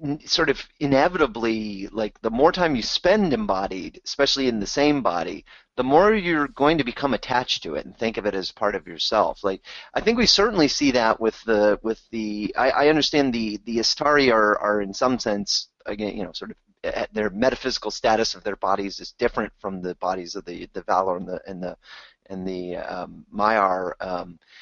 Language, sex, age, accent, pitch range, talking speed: English, male, 30-49, American, 105-140 Hz, 205 wpm